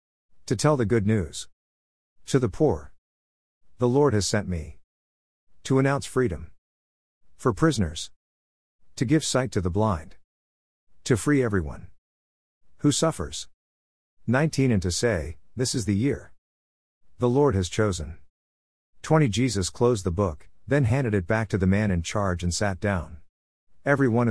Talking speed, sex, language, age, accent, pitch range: 145 wpm, male, English, 50-69, American, 85-115 Hz